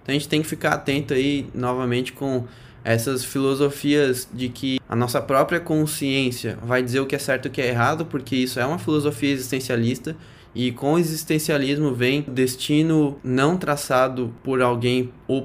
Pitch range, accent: 125-145 Hz, Brazilian